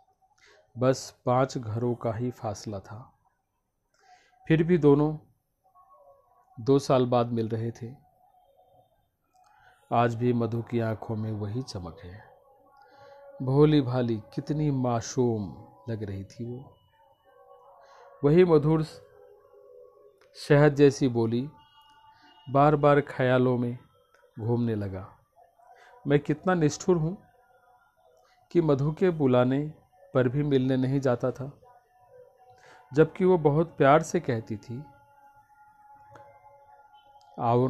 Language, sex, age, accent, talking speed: Hindi, male, 40-59, native, 105 wpm